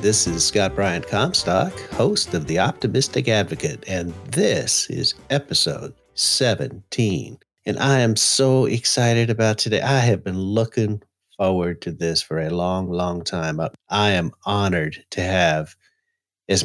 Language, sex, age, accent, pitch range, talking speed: English, male, 50-69, American, 90-115 Hz, 145 wpm